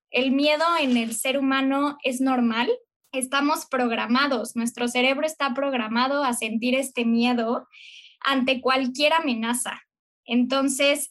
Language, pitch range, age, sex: Spanish, 240-295 Hz, 10-29, female